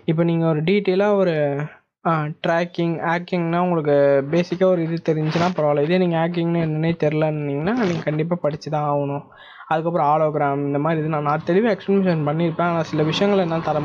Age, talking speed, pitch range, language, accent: 20-39, 165 wpm, 145-170 Hz, Tamil, native